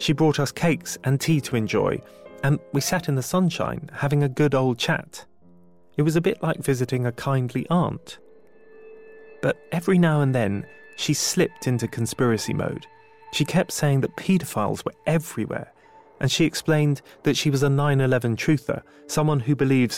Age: 30-49